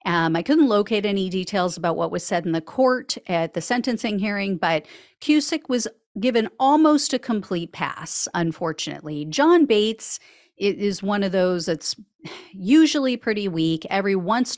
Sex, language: female, English